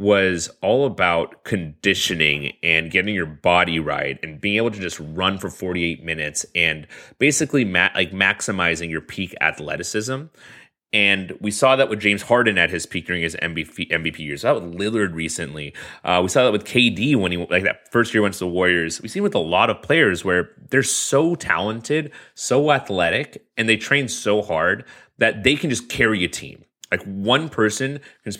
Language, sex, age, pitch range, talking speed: English, male, 30-49, 85-120 Hz, 190 wpm